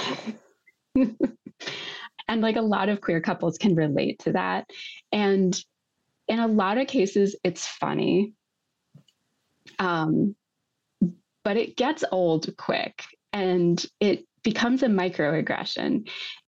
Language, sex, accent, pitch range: English, female, American, 165-220 Hz